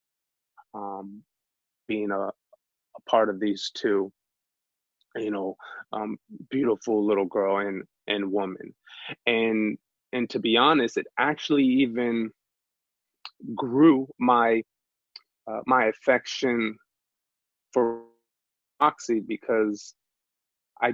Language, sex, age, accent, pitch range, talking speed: English, male, 20-39, American, 105-125 Hz, 95 wpm